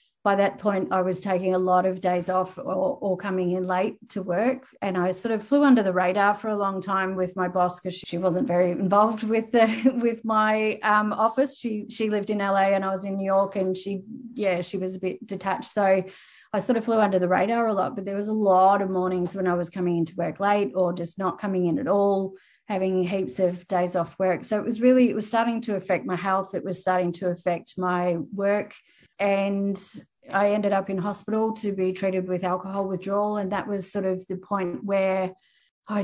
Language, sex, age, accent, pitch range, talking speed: English, female, 30-49, Australian, 185-210 Hz, 230 wpm